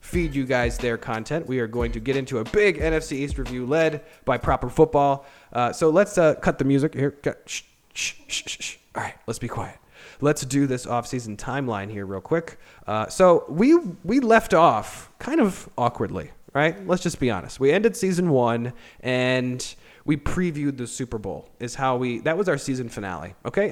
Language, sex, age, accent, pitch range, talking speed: English, male, 30-49, American, 125-170 Hz, 195 wpm